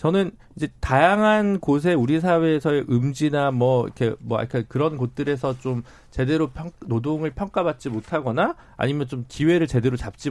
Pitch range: 120-165 Hz